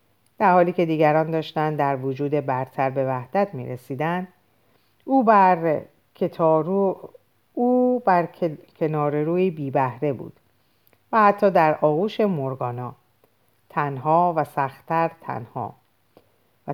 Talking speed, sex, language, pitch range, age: 100 wpm, female, Persian, 130-185 Hz, 50-69